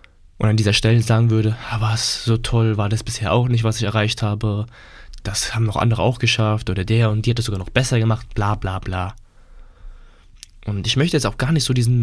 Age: 20-39